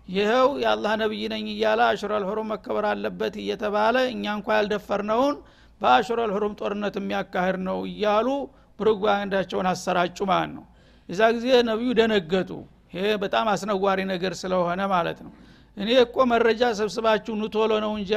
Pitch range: 195-225 Hz